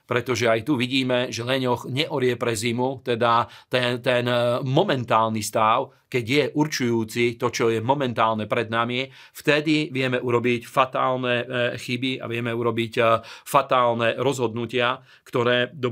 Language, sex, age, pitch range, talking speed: Slovak, male, 40-59, 115-130 Hz, 130 wpm